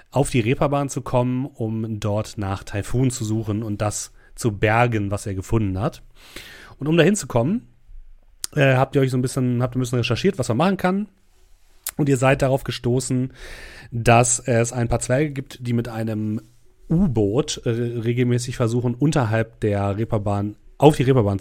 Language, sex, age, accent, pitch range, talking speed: German, male, 30-49, German, 105-130 Hz, 175 wpm